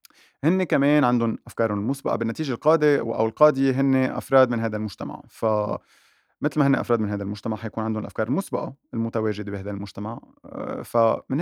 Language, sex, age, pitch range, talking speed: Arabic, male, 30-49, 105-135 Hz, 150 wpm